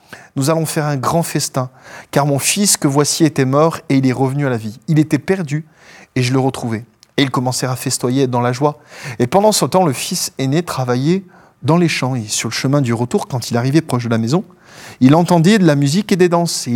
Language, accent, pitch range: French, French, 135-175 Hz